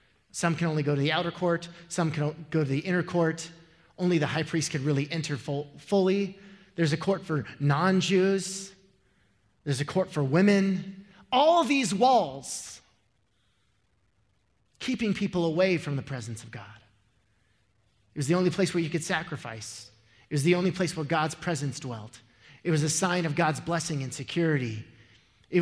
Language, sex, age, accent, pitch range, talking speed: English, male, 30-49, American, 130-190 Hz, 170 wpm